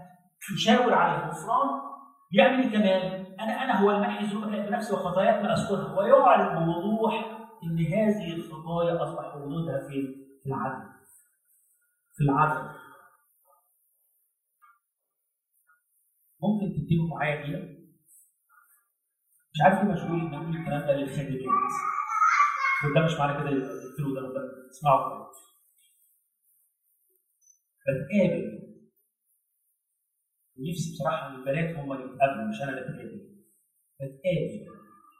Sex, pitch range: male, 150-225 Hz